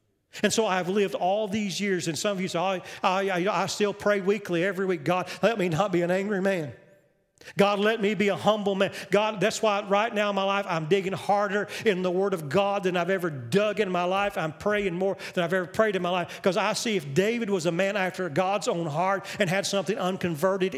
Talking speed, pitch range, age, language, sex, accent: 245 wpm, 165-195 Hz, 40-59, English, male, American